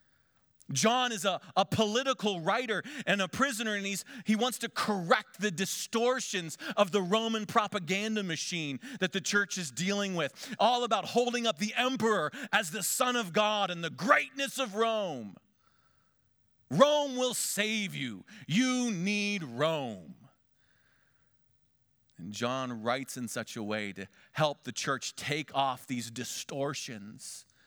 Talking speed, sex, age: 145 wpm, male, 40-59